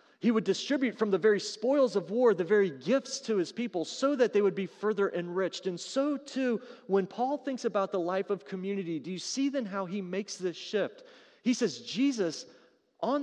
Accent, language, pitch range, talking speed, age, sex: American, English, 160-230 Hz, 210 wpm, 40-59, male